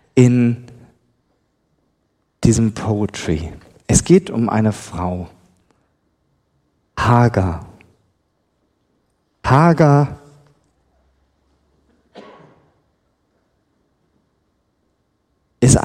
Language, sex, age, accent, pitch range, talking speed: German, male, 40-59, German, 100-150 Hz, 40 wpm